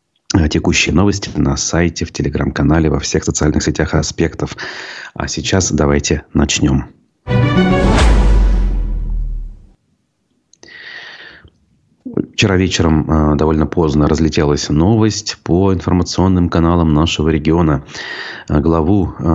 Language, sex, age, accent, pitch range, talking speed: Russian, male, 30-49, native, 75-90 Hz, 85 wpm